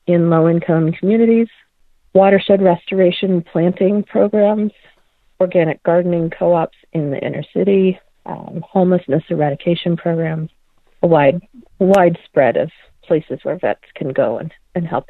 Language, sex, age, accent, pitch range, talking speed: English, female, 40-59, American, 160-190 Hz, 125 wpm